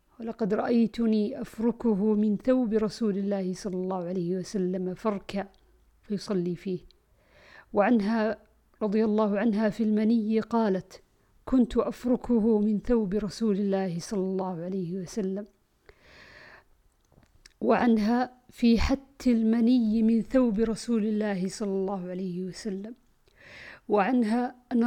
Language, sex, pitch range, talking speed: Arabic, female, 200-230 Hz, 110 wpm